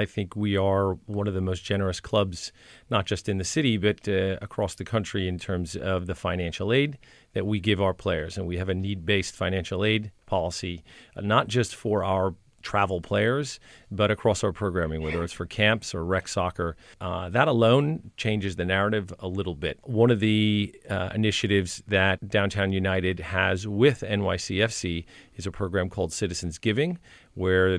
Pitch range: 95-110 Hz